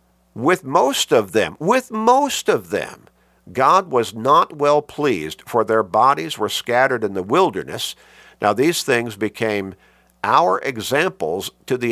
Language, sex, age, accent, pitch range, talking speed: English, male, 50-69, American, 95-140 Hz, 145 wpm